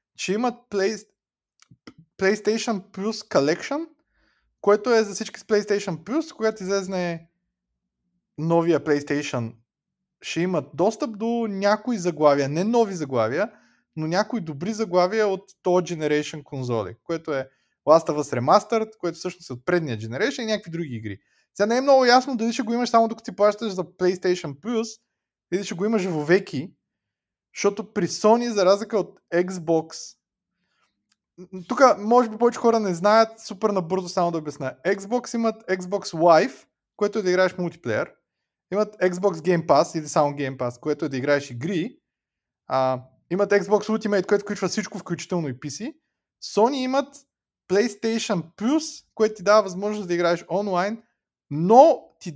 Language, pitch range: Bulgarian, 165-220 Hz